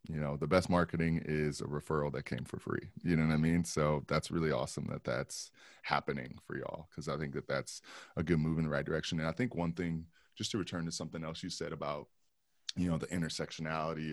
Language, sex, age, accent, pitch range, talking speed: English, male, 20-39, American, 70-85 Hz, 240 wpm